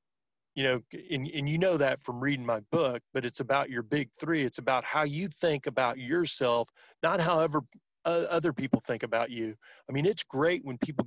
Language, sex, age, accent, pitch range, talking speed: English, male, 40-59, American, 125-155 Hz, 200 wpm